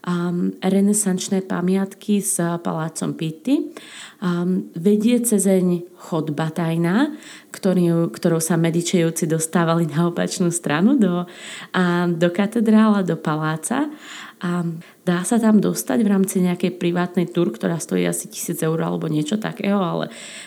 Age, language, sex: 20-39, Slovak, female